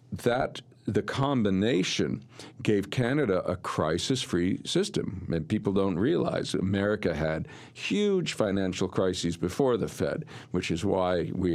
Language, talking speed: English, 120 wpm